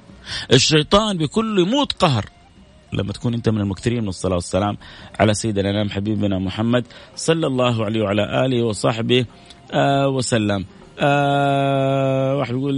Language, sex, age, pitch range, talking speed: Arabic, male, 30-49, 110-135 Hz, 130 wpm